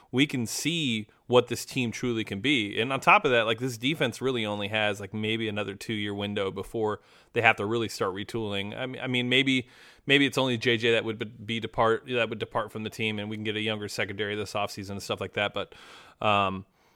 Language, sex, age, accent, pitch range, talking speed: English, male, 30-49, American, 105-125 Hz, 235 wpm